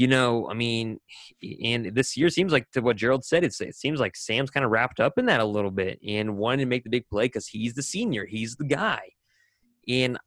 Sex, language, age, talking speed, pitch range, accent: male, English, 20-39, 240 wpm, 105-135 Hz, American